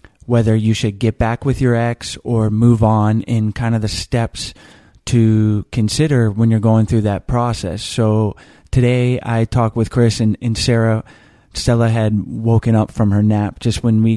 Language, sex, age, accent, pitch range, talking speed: English, male, 20-39, American, 105-120 Hz, 180 wpm